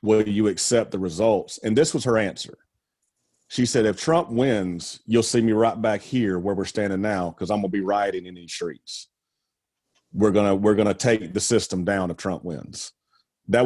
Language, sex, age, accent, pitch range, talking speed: English, male, 30-49, American, 105-130 Hz, 200 wpm